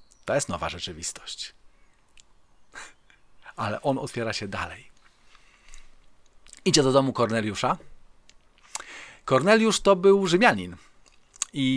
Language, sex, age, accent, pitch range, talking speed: Polish, male, 40-59, native, 110-175 Hz, 90 wpm